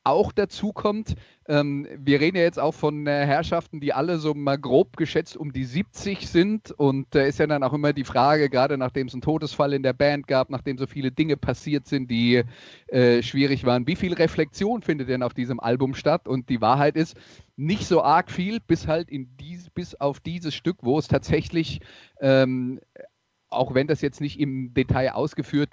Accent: German